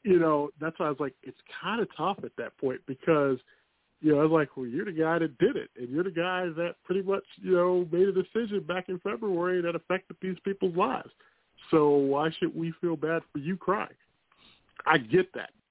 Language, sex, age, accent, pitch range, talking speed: English, male, 40-59, American, 135-180 Hz, 225 wpm